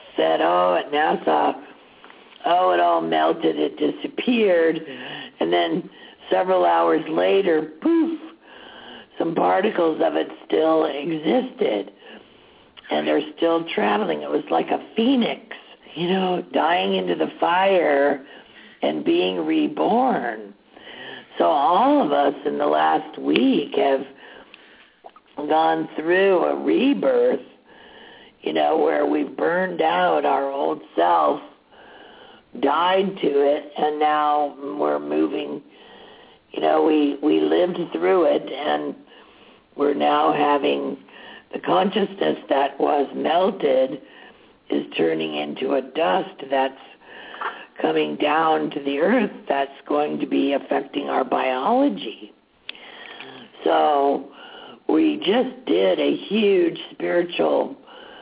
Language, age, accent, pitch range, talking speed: English, 60-79, American, 140-195 Hz, 115 wpm